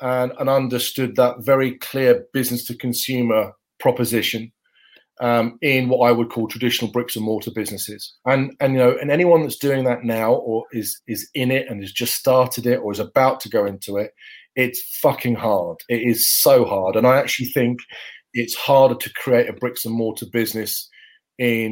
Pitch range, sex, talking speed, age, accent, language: 115-130 Hz, male, 175 wpm, 30-49, British, English